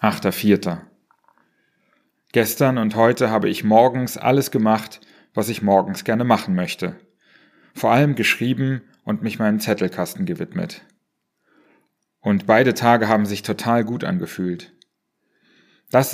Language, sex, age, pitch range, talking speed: German, male, 30-49, 105-125 Hz, 115 wpm